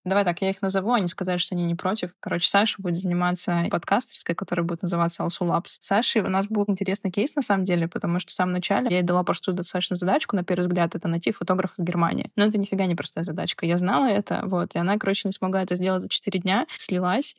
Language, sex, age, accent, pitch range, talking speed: Russian, female, 20-39, native, 175-205 Hz, 245 wpm